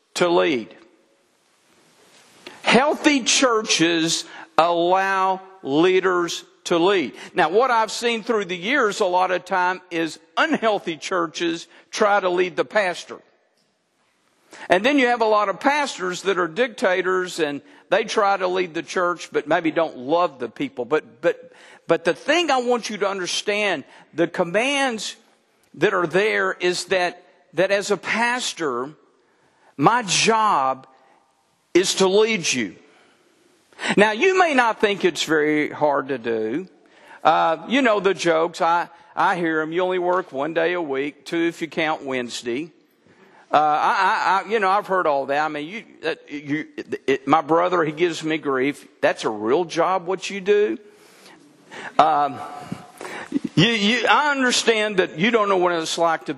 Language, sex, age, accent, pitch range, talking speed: English, male, 50-69, American, 165-220 Hz, 160 wpm